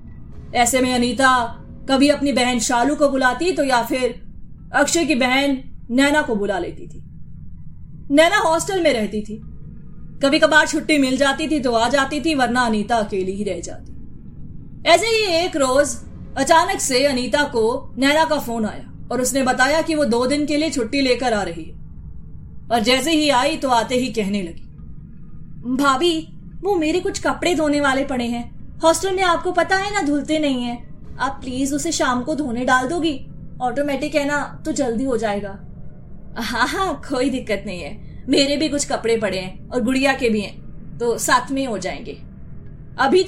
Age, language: 20-39, Hindi